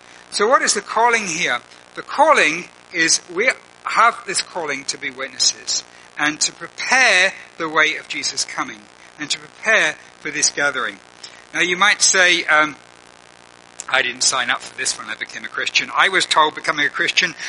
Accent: British